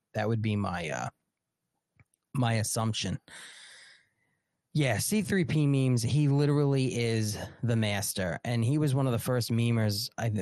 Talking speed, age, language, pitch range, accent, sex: 150 wpm, 20-39, English, 110-140 Hz, American, male